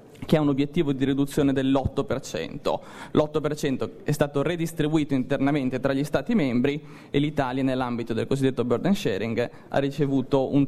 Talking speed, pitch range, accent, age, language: 145 wpm, 135-155 Hz, native, 20-39, Italian